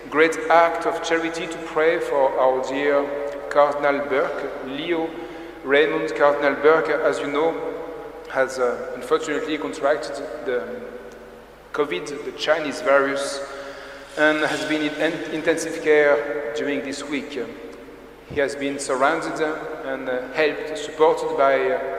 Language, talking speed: English, 120 wpm